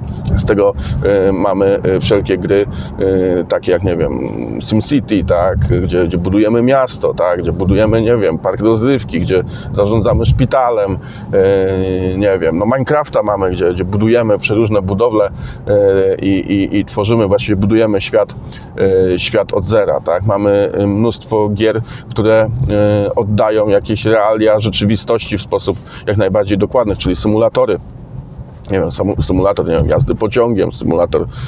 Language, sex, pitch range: Polish, male, 95-110 Hz